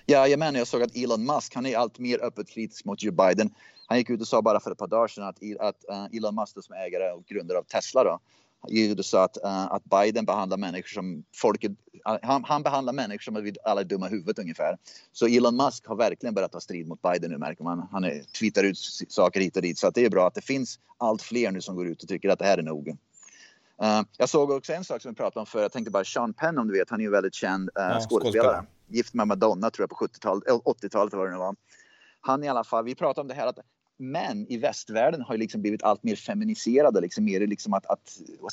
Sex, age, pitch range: male, 30-49, 100-125 Hz